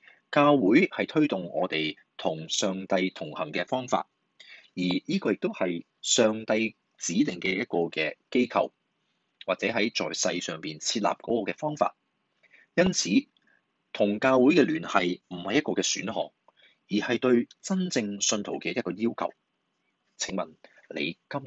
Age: 30-49